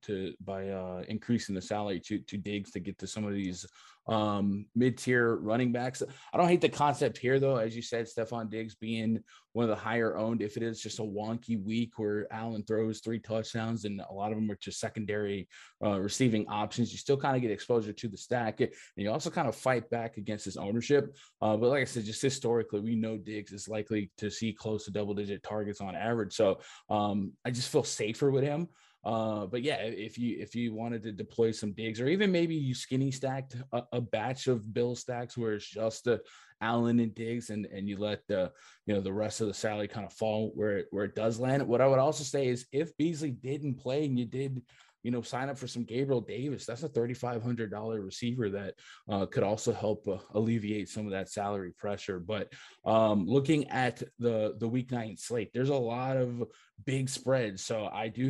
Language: English